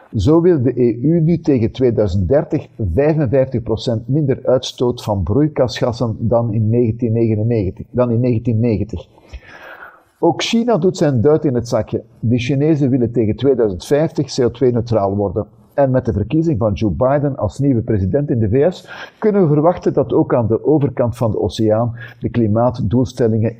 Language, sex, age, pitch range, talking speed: Dutch, male, 50-69, 110-145 Hz, 145 wpm